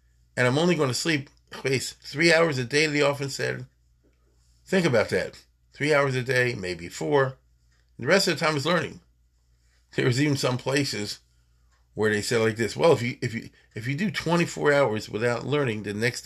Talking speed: 195 wpm